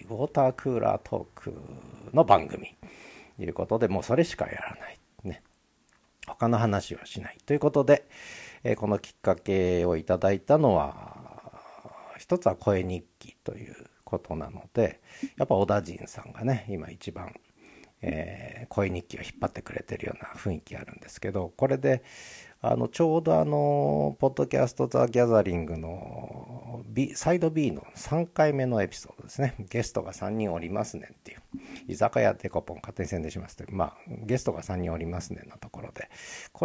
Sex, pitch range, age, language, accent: male, 90-130 Hz, 50-69, Japanese, native